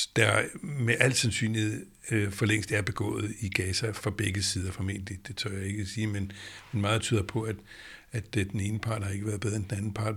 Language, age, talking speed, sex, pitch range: Danish, 60-79, 220 wpm, male, 105-125 Hz